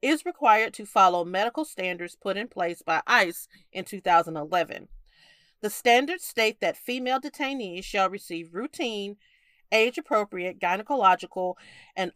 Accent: American